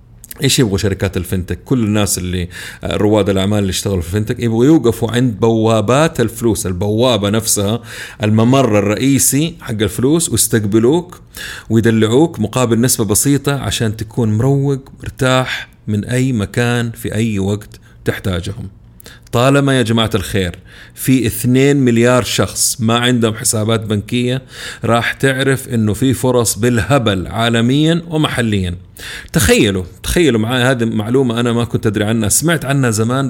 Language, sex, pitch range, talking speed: Arabic, male, 105-130 Hz, 130 wpm